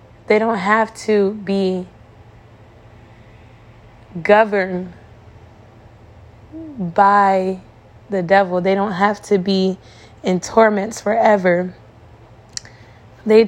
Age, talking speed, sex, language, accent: 20-39, 80 wpm, female, English, American